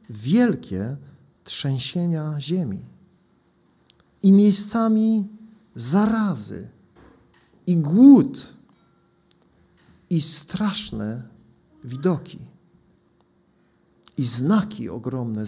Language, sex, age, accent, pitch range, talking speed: Polish, male, 50-69, native, 130-205 Hz, 55 wpm